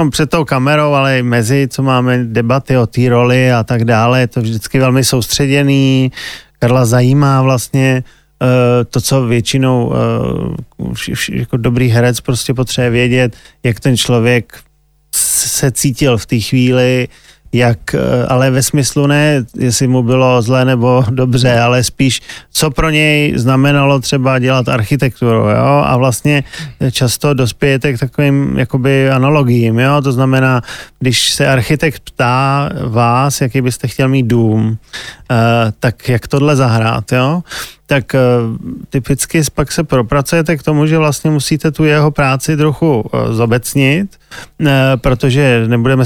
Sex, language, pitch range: male, Slovak, 125-145 Hz